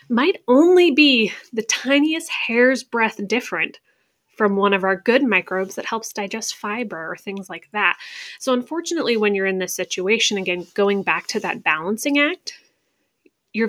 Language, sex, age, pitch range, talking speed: English, female, 20-39, 190-250 Hz, 160 wpm